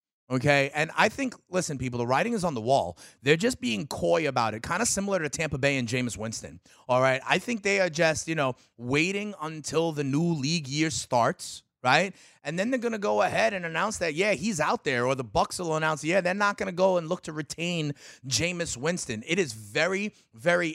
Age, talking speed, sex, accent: 30-49, 220 wpm, male, American